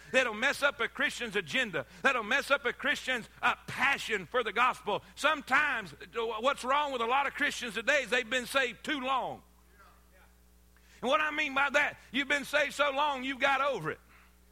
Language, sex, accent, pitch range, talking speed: English, male, American, 225-285 Hz, 190 wpm